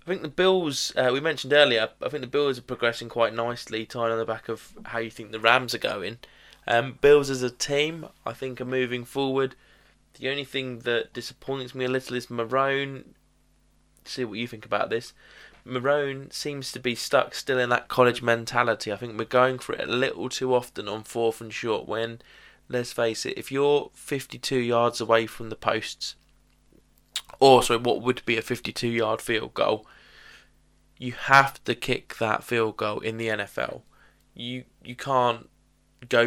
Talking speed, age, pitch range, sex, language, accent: 190 wpm, 20-39, 115-130 Hz, male, English, British